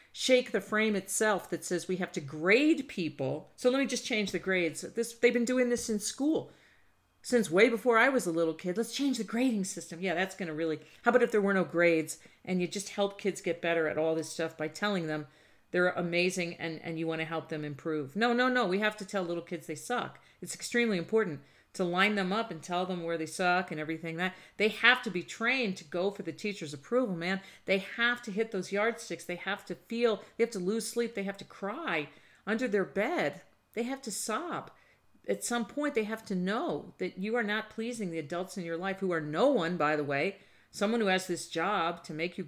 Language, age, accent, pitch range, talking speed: English, 40-59, American, 170-225 Hz, 240 wpm